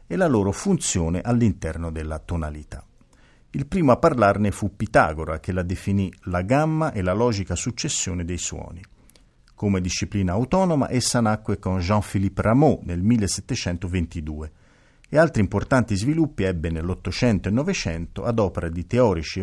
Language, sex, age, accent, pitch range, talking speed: Italian, male, 50-69, native, 85-120 Hz, 140 wpm